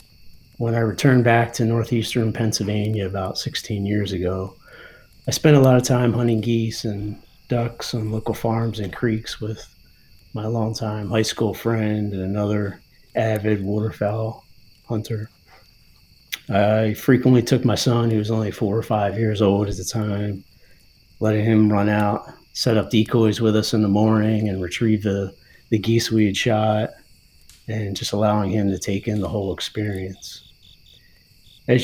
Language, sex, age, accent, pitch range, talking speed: English, male, 30-49, American, 100-115 Hz, 160 wpm